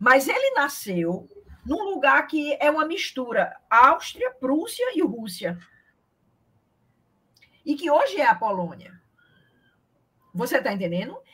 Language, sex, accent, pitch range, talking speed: Portuguese, female, Brazilian, 195-310 Hz, 115 wpm